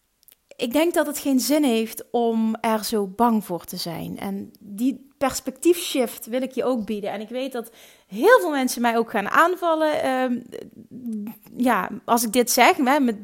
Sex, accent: female, Dutch